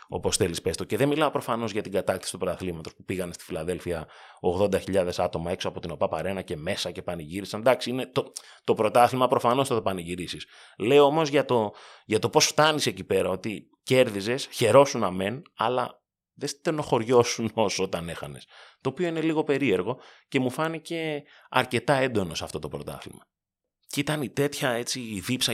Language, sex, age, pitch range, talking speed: Greek, male, 30-49, 95-135 Hz, 180 wpm